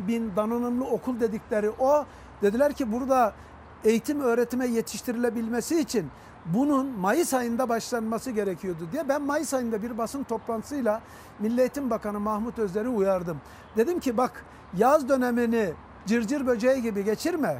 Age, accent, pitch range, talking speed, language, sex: 60-79, native, 225-275 Hz, 135 wpm, Turkish, male